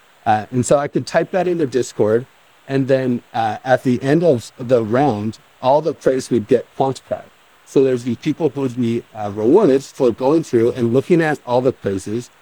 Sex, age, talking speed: male, 50-69, 200 wpm